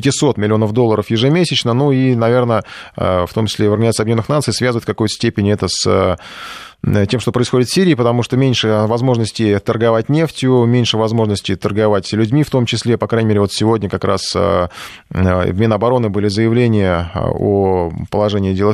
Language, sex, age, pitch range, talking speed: Russian, male, 20-39, 105-125 Hz, 165 wpm